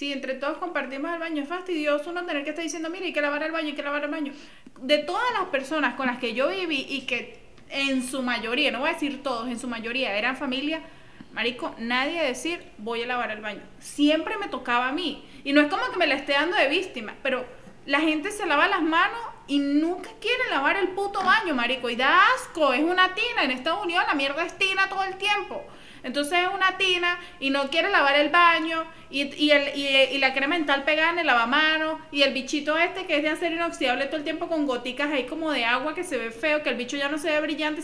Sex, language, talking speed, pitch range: female, Spanish, 250 wpm, 275-330 Hz